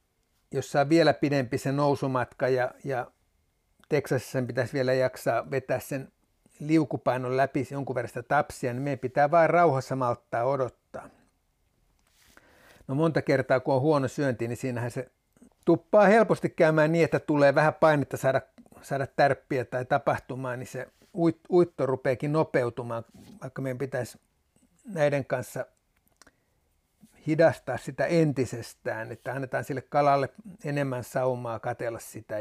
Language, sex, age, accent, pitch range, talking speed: Finnish, male, 60-79, native, 130-150 Hz, 135 wpm